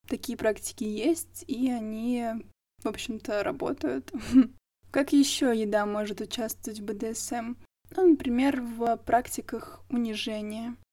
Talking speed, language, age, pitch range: 110 wpm, Russian, 20-39, 225-265 Hz